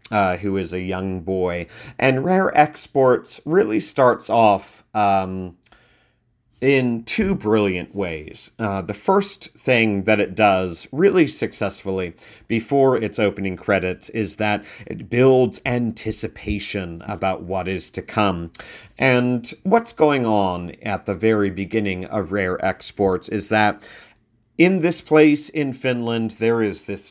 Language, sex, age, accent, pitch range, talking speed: English, male, 40-59, American, 100-120 Hz, 135 wpm